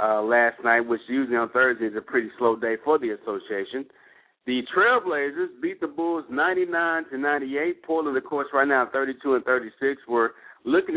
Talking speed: 180 wpm